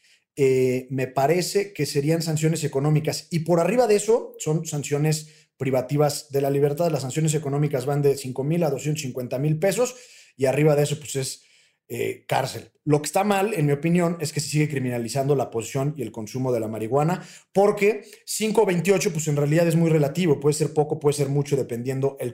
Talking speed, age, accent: 195 wpm, 30-49, Mexican